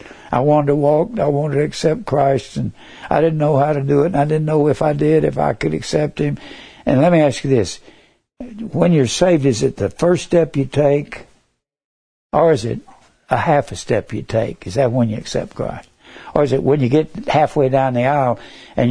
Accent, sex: American, male